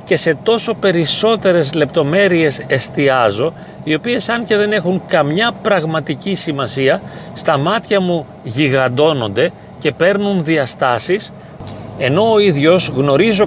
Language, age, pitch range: Greek, 40-59, 135-180 Hz